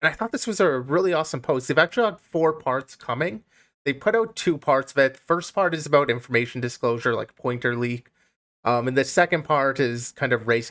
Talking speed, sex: 230 wpm, male